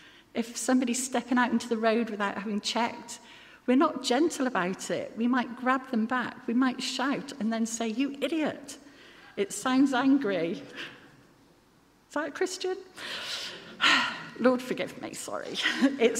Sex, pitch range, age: female, 205-260 Hz, 50-69